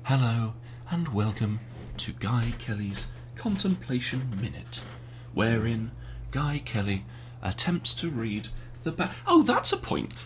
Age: 30-49